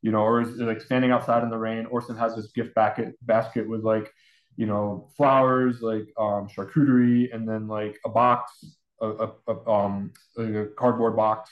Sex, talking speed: male, 200 wpm